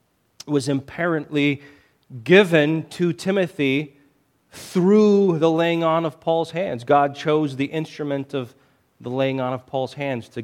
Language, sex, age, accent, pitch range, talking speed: English, male, 40-59, American, 150-225 Hz, 140 wpm